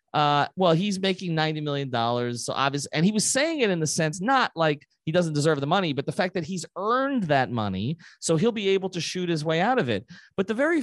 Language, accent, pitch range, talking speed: English, American, 125-175 Hz, 250 wpm